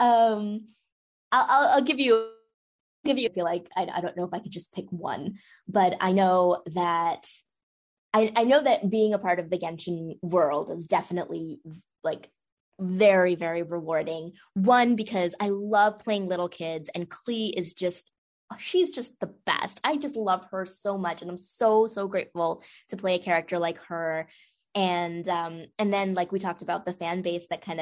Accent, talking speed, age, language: American, 185 wpm, 20-39, English